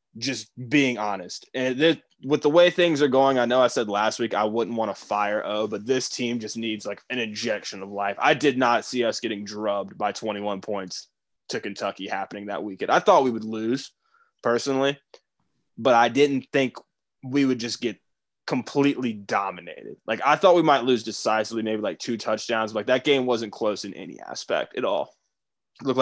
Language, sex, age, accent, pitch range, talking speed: English, male, 20-39, American, 105-125 Hz, 195 wpm